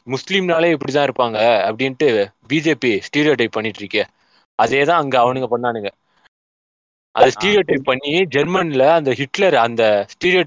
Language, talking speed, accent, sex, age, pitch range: Tamil, 125 wpm, native, male, 20-39, 120-175 Hz